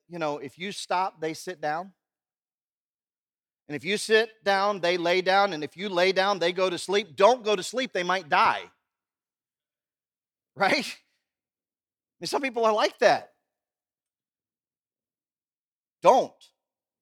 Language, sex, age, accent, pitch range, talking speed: English, male, 40-59, American, 135-190 Hz, 140 wpm